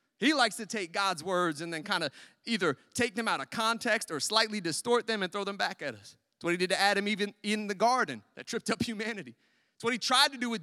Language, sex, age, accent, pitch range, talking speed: English, male, 30-49, American, 175-230 Hz, 265 wpm